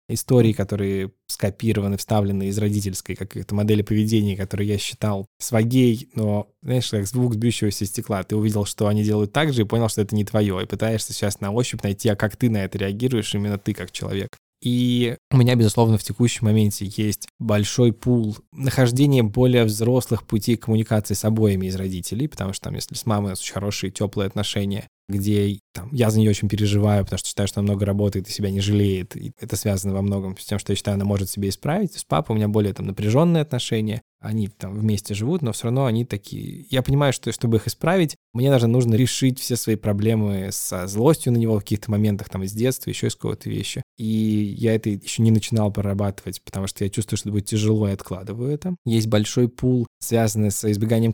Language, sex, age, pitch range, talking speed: Russian, male, 20-39, 100-120 Hz, 210 wpm